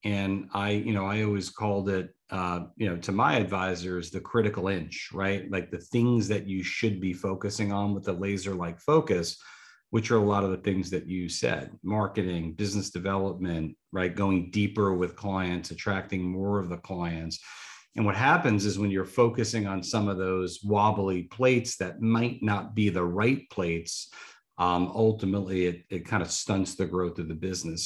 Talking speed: 185 wpm